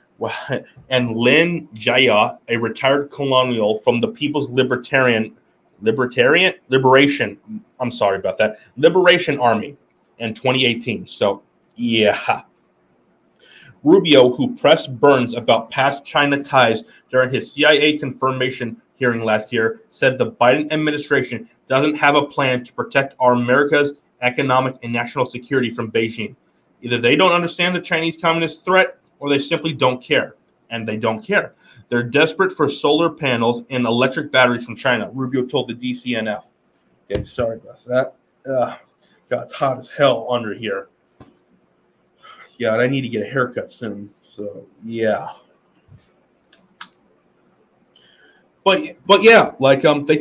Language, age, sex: English, 30-49, male